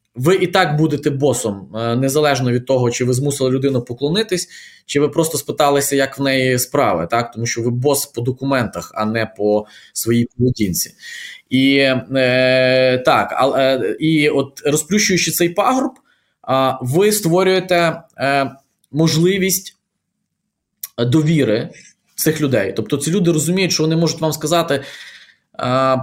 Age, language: 20-39, Ukrainian